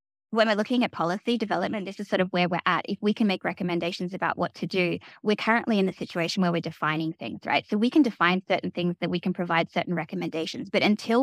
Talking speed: 245 wpm